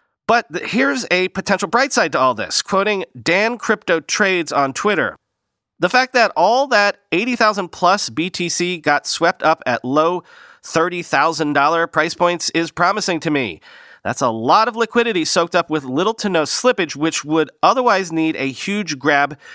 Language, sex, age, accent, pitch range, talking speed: English, male, 40-59, American, 125-195 Hz, 165 wpm